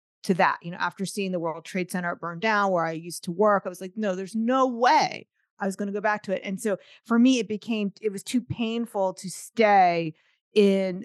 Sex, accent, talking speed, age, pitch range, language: female, American, 245 wpm, 40-59, 180-225 Hz, English